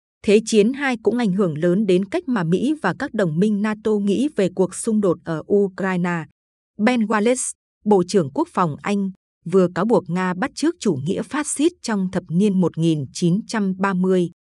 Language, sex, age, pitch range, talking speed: Vietnamese, female, 20-39, 180-225 Hz, 180 wpm